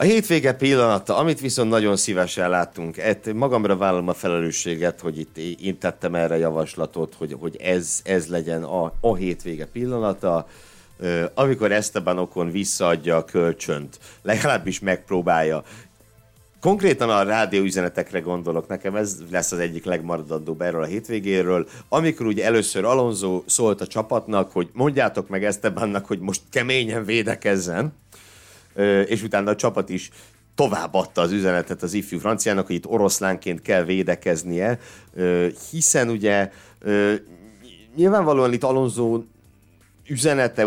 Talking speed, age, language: 130 wpm, 60-79, Hungarian